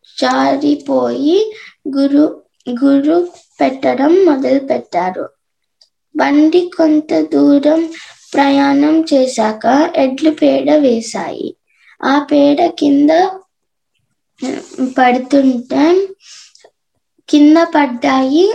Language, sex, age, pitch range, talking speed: Telugu, female, 20-39, 275-330 Hz, 60 wpm